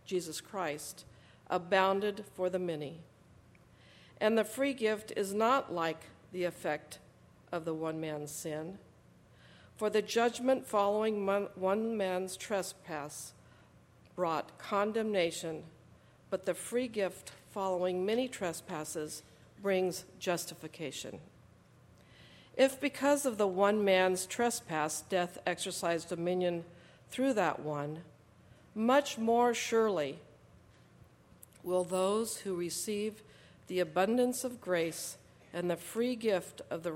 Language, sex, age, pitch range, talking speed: English, female, 50-69, 165-210 Hz, 110 wpm